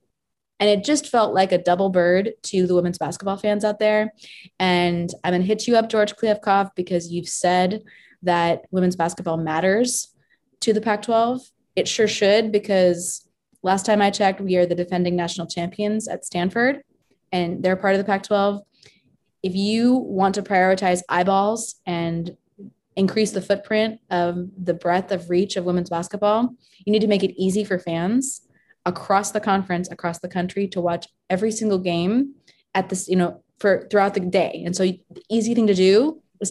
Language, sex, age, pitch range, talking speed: English, female, 20-39, 175-205 Hz, 180 wpm